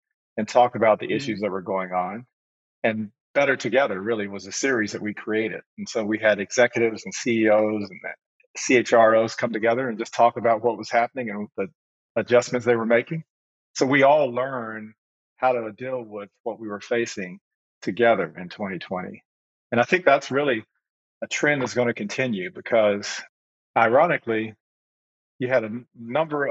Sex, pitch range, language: male, 110-130 Hz, English